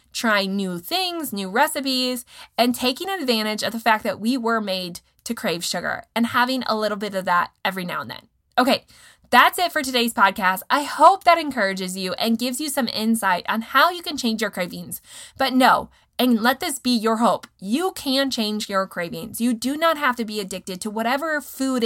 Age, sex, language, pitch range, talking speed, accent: 20-39, female, English, 195-265 Hz, 205 wpm, American